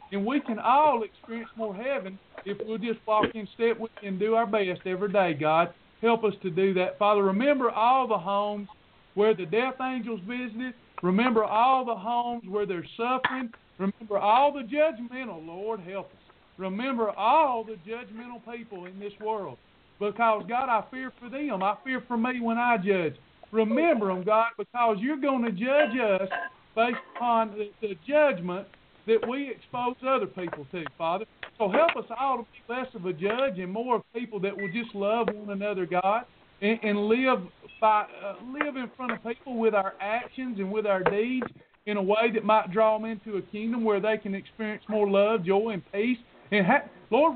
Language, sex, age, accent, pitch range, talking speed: English, male, 50-69, American, 200-250 Hz, 190 wpm